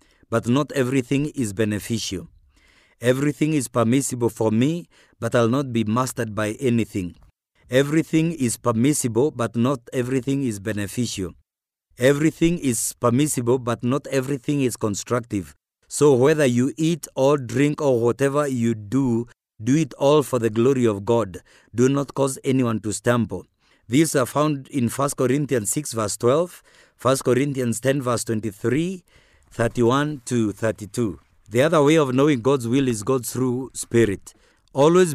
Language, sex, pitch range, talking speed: English, male, 115-140 Hz, 145 wpm